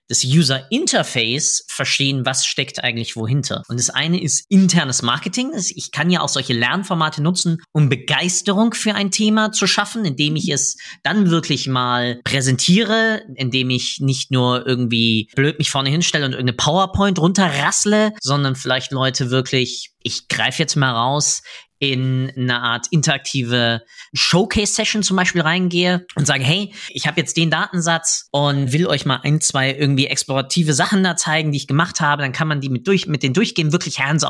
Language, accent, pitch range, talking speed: German, German, 135-175 Hz, 175 wpm